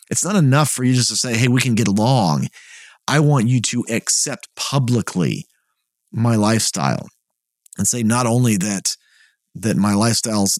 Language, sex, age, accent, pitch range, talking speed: English, male, 30-49, American, 110-135 Hz, 165 wpm